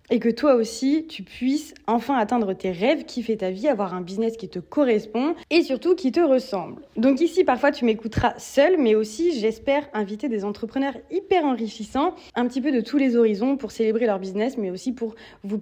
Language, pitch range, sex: French, 215-265 Hz, female